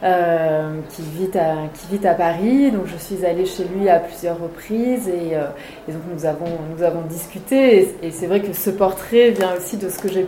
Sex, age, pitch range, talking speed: female, 20-39, 180-215 Hz, 230 wpm